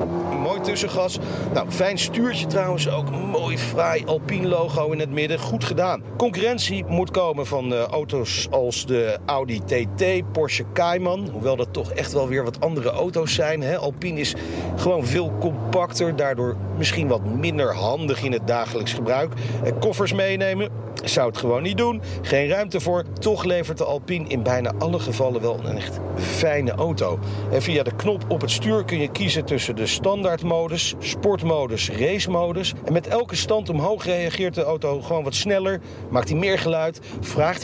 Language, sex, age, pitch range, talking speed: Dutch, male, 40-59, 115-170 Hz, 165 wpm